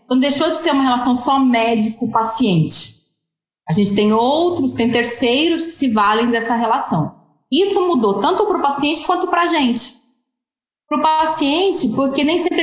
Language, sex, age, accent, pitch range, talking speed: Portuguese, female, 20-39, Brazilian, 205-260 Hz, 165 wpm